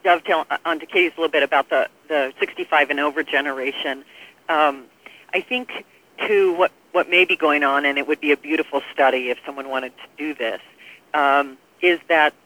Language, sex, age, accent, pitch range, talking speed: English, female, 50-69, American, 135-170 Hz, 190 wpm